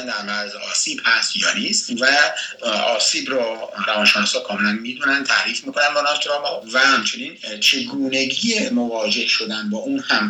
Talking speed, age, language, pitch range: 110 wpm, 60-79, Persian, 105-160 Hz